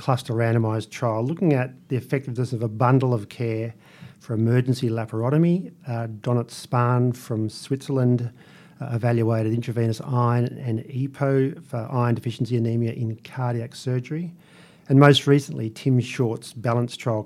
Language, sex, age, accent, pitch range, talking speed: English, male, 40-59, Australian, 115-150 Hz, 140 wpm